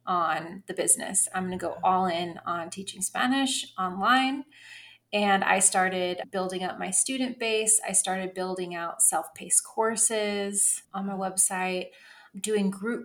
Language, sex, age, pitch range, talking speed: English, female, 30-49, 180-215 Hz, 145 wpm